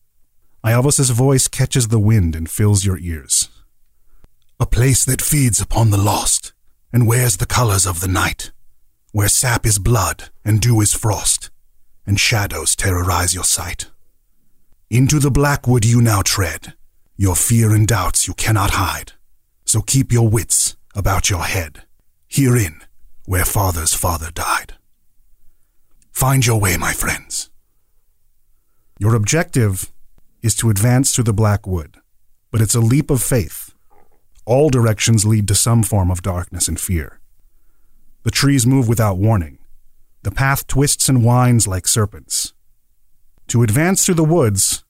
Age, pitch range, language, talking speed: 40-59, 95-125 Hz, English, 145 wpm